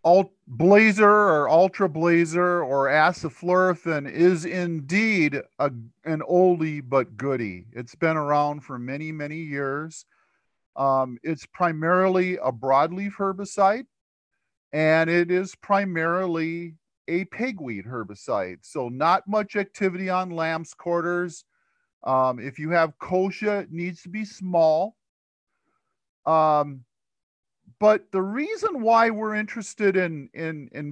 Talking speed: 120 wpm